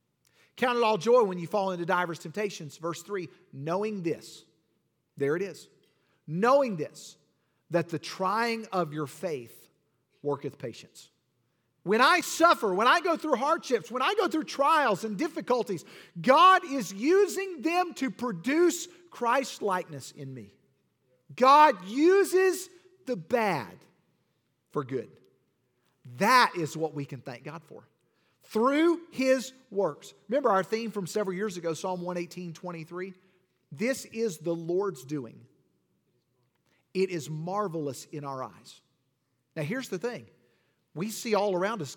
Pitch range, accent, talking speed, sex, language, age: 150-230 Hz, American, 140 wpm, male, English, 50-69